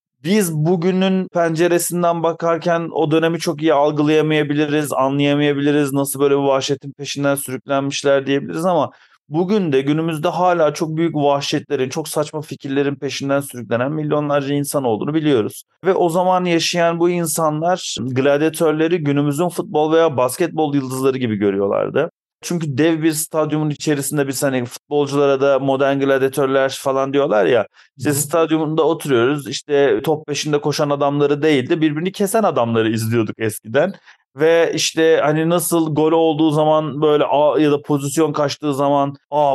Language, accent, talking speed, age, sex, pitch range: Turkish, native, 140 wpm, 40-59, male, 140-165 Hz